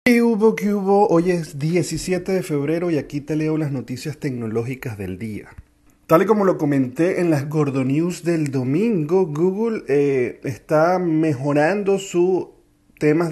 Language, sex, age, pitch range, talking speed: Spanish, male, 30-49, 120-155 Hz, 160 wpm